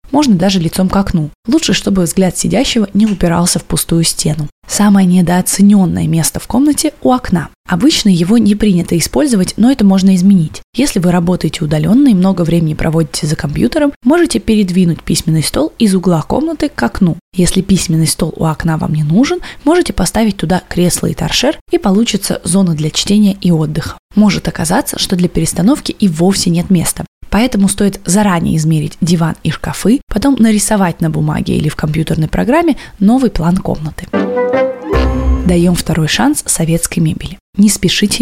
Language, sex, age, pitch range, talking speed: Russian, female, 20-39, 165-215 Hz, 165 wpm